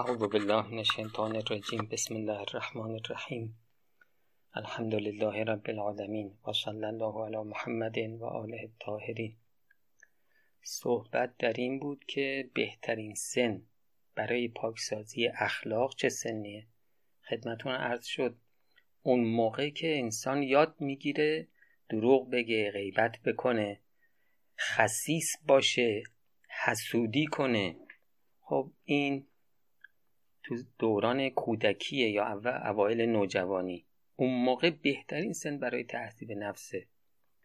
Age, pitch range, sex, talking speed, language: 30-49, 110-135 Hz, male, 100 wpm, Persian